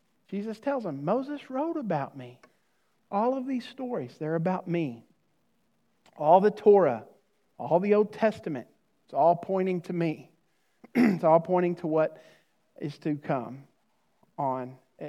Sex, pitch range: male, 145-190 Hz